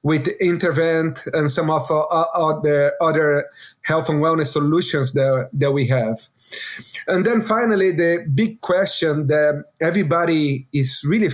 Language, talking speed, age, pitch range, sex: English, 140 wpm, 30-49, 145-175 Hz, male